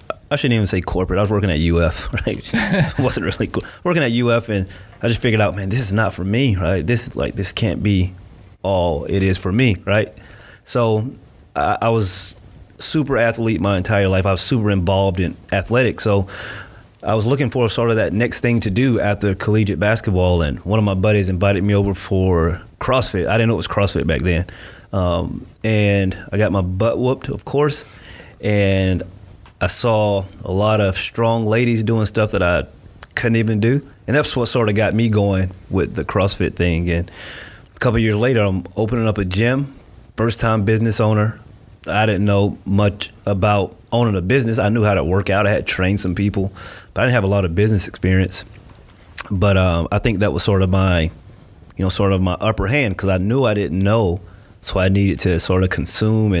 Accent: American